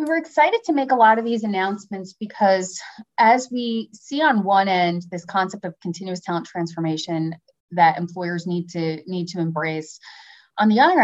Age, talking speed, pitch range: 30-49, 180 wpm, 165-200 Hz